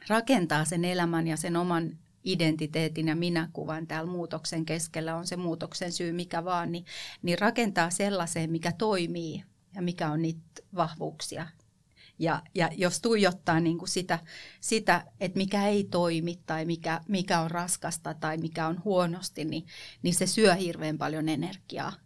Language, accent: Finnish, native